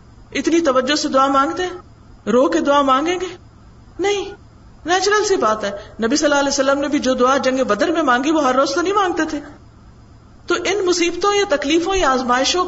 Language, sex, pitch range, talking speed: Urdu, female, 240-345 Hz, 205 wpm